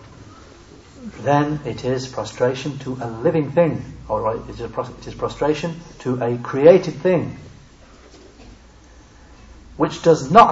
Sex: male